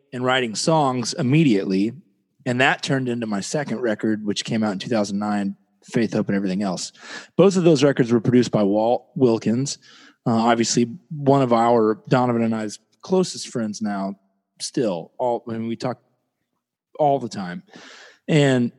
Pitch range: 110-140 Hz